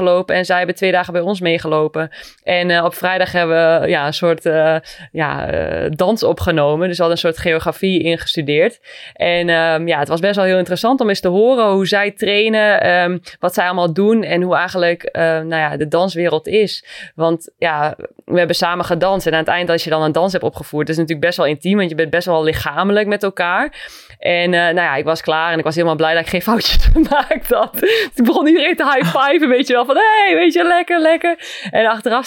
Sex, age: female, 20-39